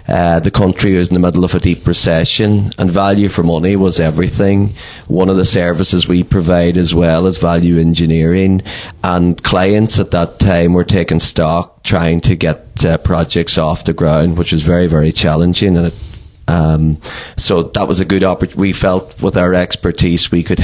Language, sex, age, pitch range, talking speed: English, male, 30-49, 85-100 Hz, 185 wpm